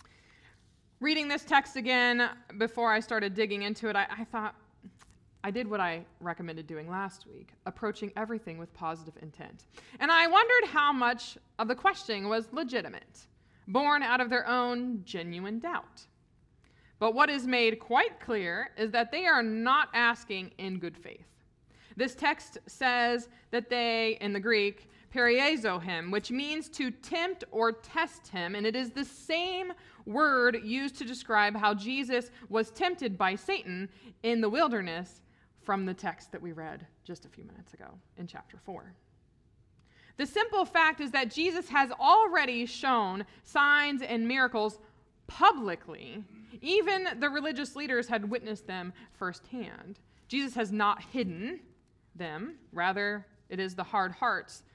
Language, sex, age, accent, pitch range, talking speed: English, female, 20-39, American, 195-270 Hz, 150 wpm